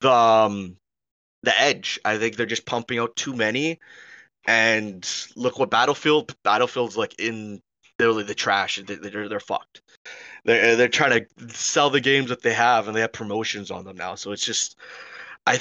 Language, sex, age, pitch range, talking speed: English, male, 20-39, 105-125 Hz, 180 wpm